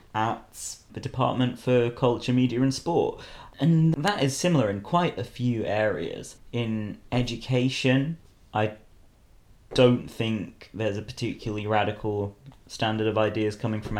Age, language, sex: 30-49, English, male